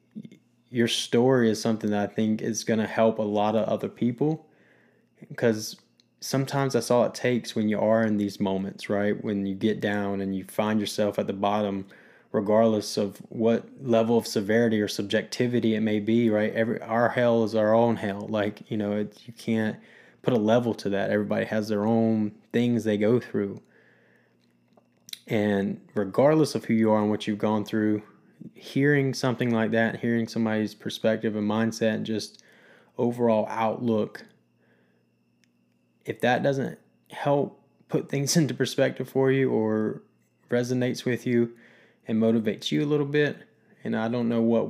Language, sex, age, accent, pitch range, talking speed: English, male, 20-39, American, 105-115 Hz, 170 wpm